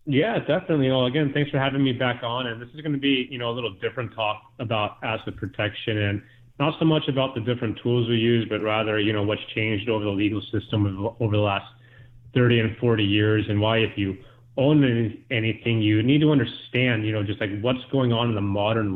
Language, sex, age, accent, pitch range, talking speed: English, male, 30-49, American, 110-120 Hz, 230 wpm